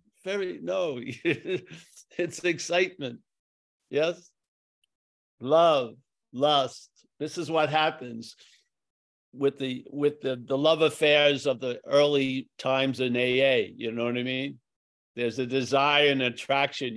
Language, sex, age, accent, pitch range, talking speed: English, male, 60-79, American, 125-170 Hz, 120 wpm